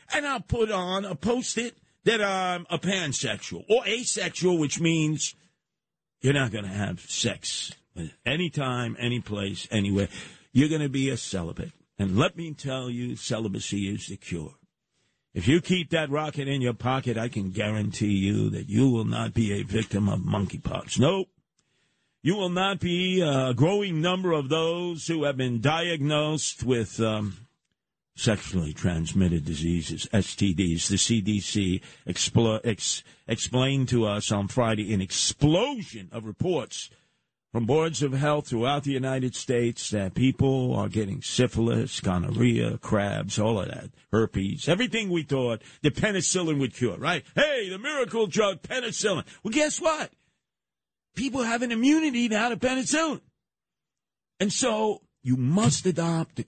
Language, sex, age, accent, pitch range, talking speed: English, male, 50-69, American, 110-175 Hz, 150 wpm